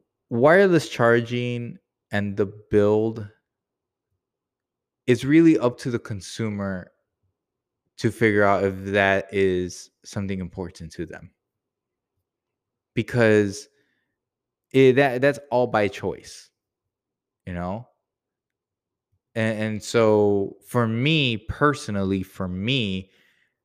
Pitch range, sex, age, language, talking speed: 100-130 Hz, male, 20-39, English, 95 wpm